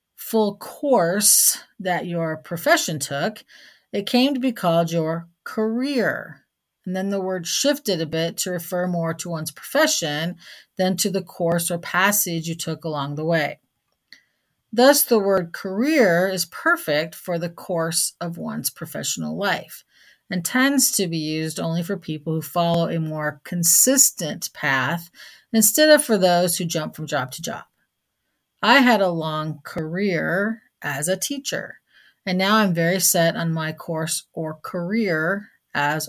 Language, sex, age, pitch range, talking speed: English, female, 40-59, 165-210 Hz, 155 wpm